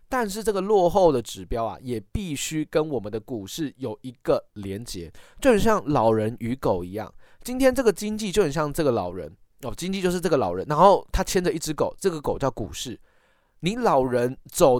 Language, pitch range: Chinese, 120-190 Hz